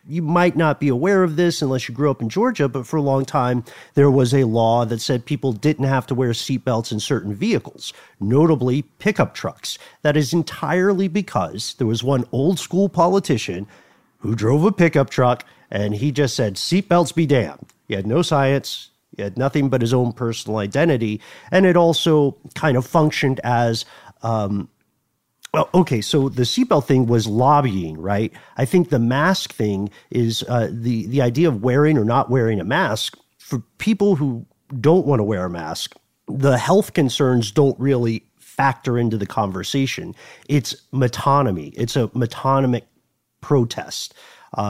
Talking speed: 170 wpm